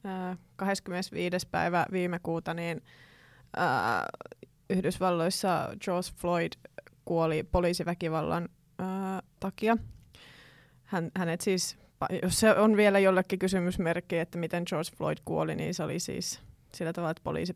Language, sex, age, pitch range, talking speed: Finnish, female, 20-39, 170-195 Hz, 125 wpm